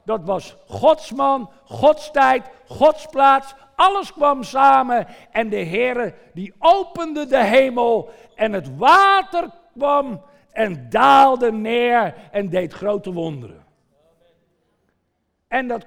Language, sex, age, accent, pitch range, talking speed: Dutch, male, 60-79, Dutch, 165-240 Hz, 115 wpm